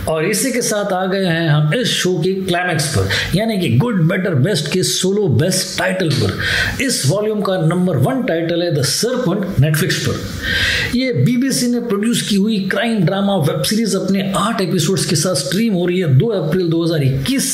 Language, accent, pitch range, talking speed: Hindi, native, 160-200 Hz, 190 wpm